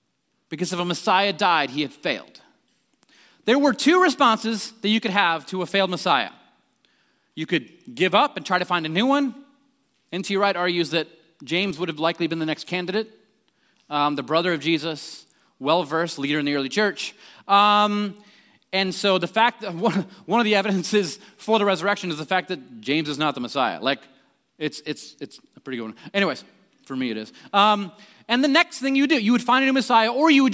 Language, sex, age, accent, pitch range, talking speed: English, male, 30-49, American, 175-250 Hz, 205 wpm